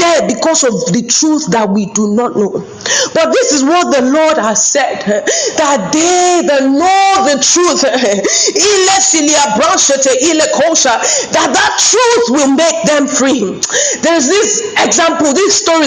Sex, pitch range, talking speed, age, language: female, 240-325 Hz, 130 wpm, 40-59, English